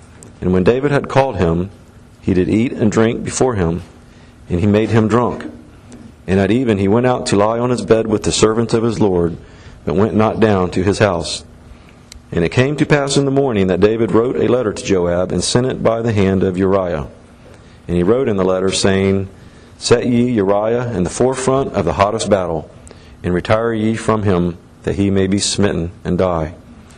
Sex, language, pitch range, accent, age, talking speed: male, English, 90-115 Hz, American, 50-69, 210 wpm